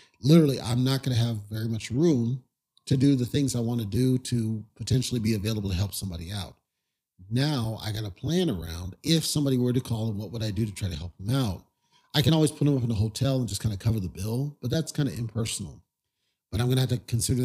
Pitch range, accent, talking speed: 105-135 Hz, American, 260 wpm